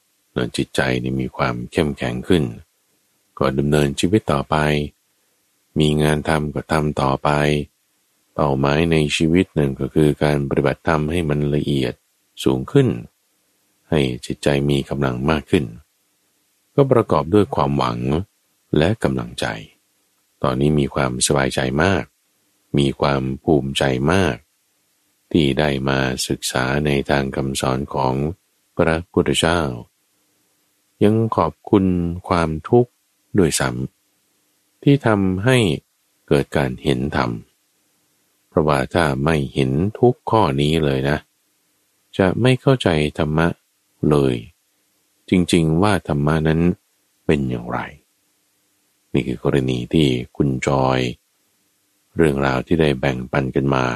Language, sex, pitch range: Thai, male, 70-85 Hz